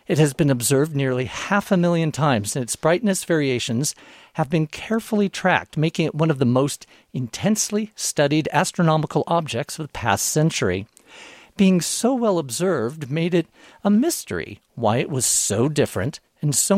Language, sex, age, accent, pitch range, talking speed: English, male, 50-69, American, 120-170 Hz, 165 wpm